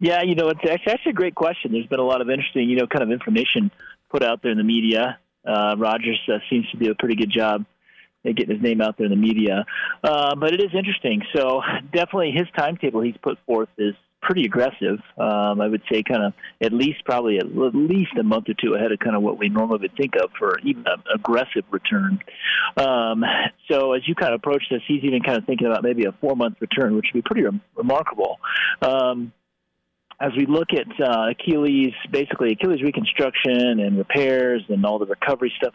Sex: male